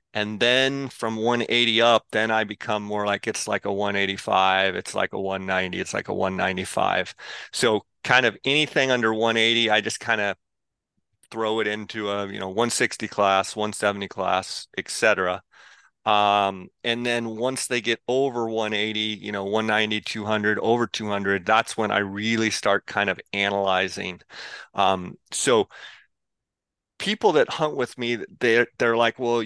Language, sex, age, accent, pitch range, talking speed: English, male, 30-49, American, 105-120 Hz, 155 wpm